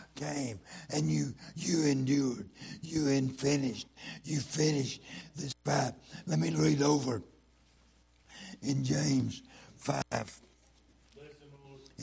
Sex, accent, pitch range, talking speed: male, American, 115-150 Hz, 90 wpm